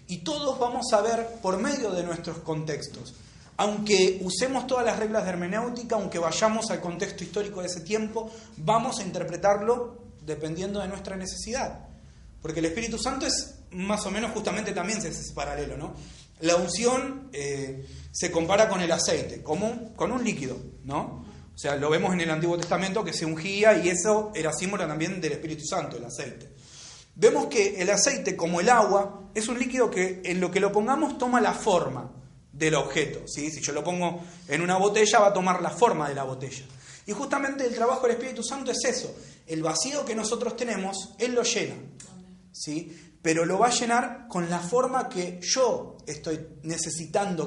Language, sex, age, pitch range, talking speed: Spanish, male, 30-49, 160-225 Hz, 185 wpm